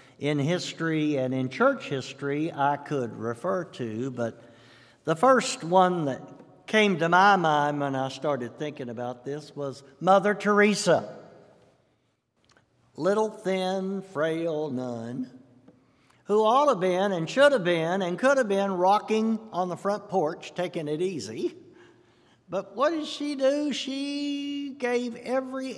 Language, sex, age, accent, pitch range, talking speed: English, male, 60-79, American, 135-205 Hz, 140 wpm